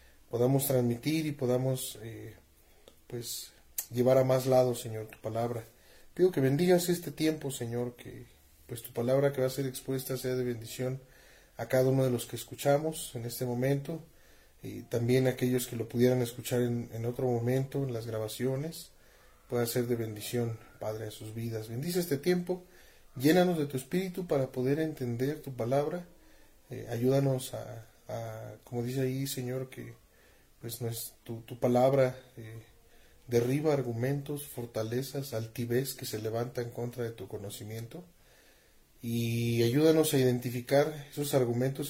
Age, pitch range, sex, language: 30-49, 120-135 Hz, male, Spanish